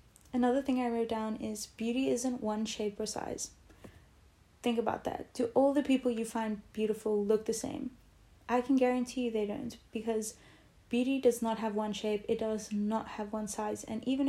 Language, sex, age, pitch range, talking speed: English, female, 20-39, 215-245 Hz, 195 wpm